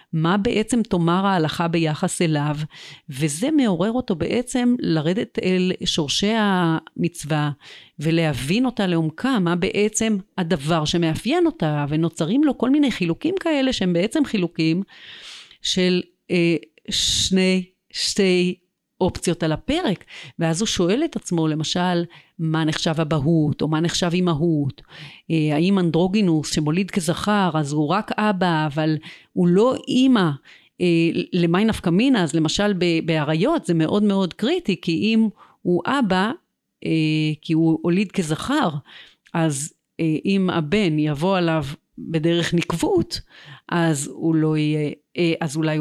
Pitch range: 160-200 Hz